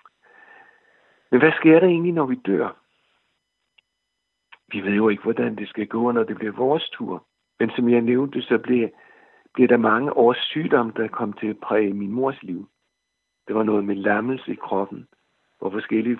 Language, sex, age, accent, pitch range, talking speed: Danish, male, 60-79, native, 110-135 Hz, 180 wpm